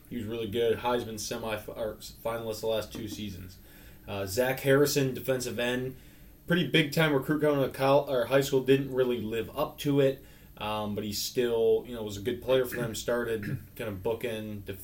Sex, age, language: male, 20-39, English